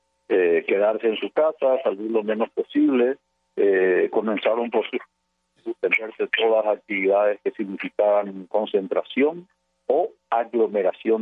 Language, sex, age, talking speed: Portuguese, male, 50-69, 105 wpm